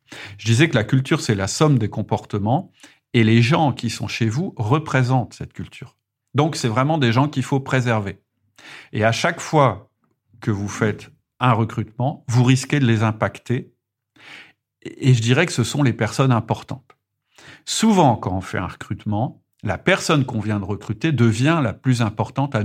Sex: male